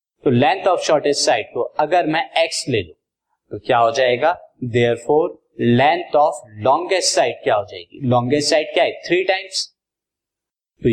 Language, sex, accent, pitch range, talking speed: Hindi, male, native, 125-190 Hz, 155 wpm